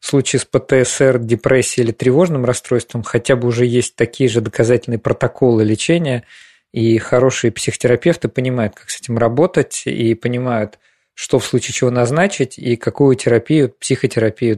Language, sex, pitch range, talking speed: Russian, male, 115-135 Hz, 150 wpm